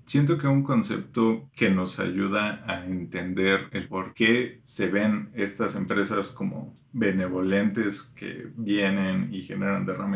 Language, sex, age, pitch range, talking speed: Spanish, male, 30-49, 95-115 Hz, 135 wpm